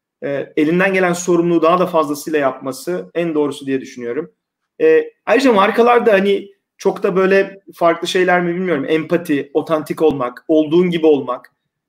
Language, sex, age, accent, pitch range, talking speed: Turkish, male, 40-59, native, 140-170 Hz, 135 wpm